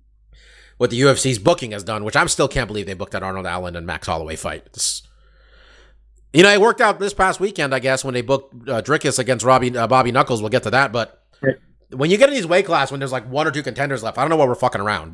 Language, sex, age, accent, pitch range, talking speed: English, male, 30-49, American, 100-145 Hz, 270 wpm